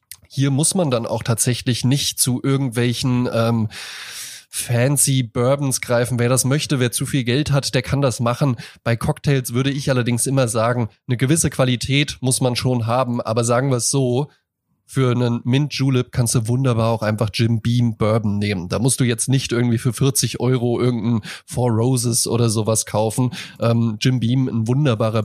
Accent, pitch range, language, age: German, 115-140 Hz, German, 20-39